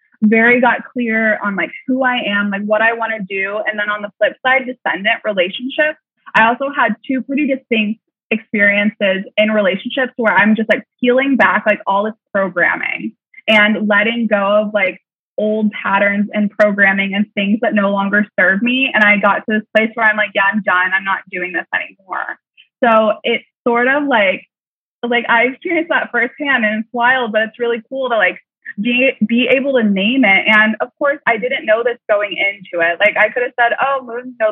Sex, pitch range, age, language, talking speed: female, 205-245 Hz, 20-39, English, 205 wpm